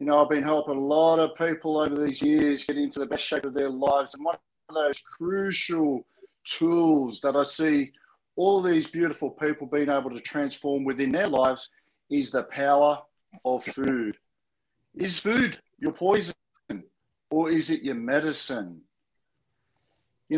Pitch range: 135-170 Hz